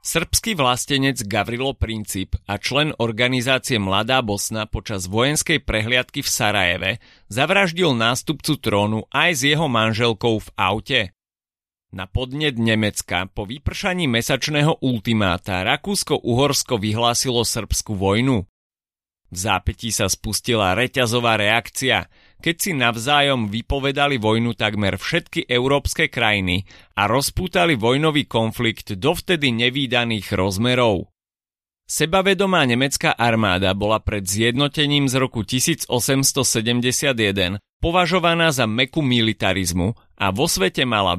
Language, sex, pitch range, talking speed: Slovak, male, 105-140 Hz, 110 wpm